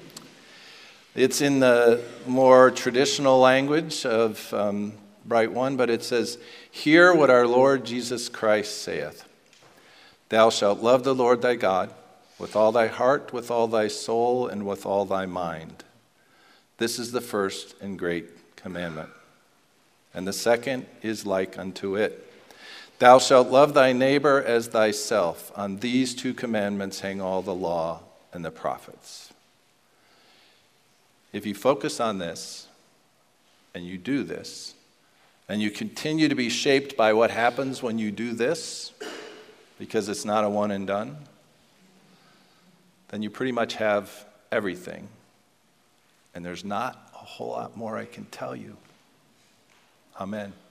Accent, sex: American, male